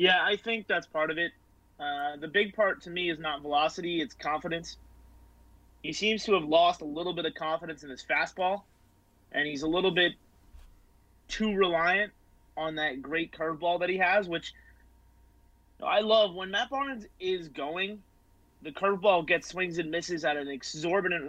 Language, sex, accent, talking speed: English, male, American, 180 wpm